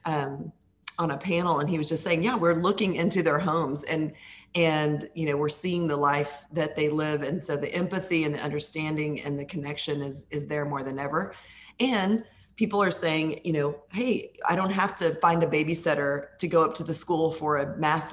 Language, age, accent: English, 30-49, American